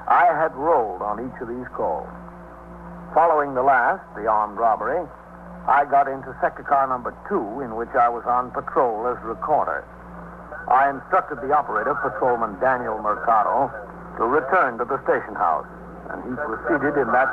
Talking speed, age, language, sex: 165 wpm, 60-79, English, male